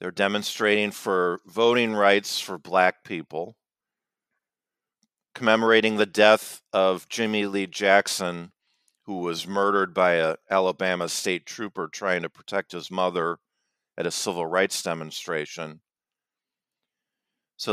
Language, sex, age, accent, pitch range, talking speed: English, male, 50-69, American, 90-110 Hz, 115 wpm